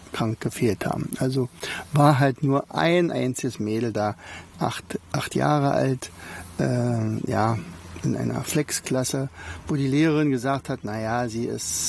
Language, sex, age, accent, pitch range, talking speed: German, male, 60-79, German, 110-150 Hz, 135 wpm